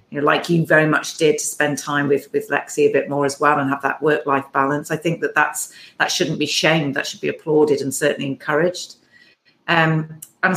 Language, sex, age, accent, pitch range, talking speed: English, female, 40-59, British, 150-175 Hz, 220 wpm